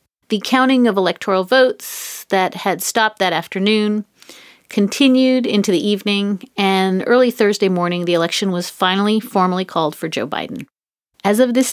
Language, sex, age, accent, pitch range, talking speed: English, female, 30-49, American, 170-215 Hz, 155 wpm